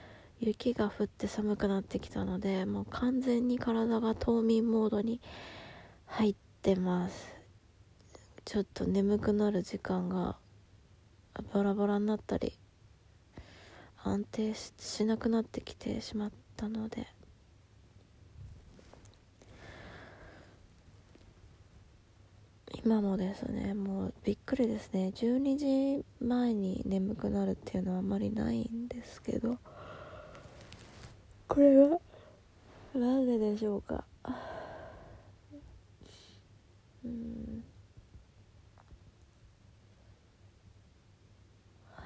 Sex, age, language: female, 20-39, Japanese